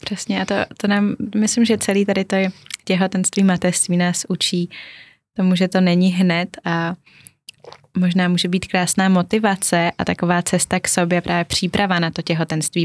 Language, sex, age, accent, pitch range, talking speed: Czech, female, 20-39, native, 170-190 Hz, 165 wpm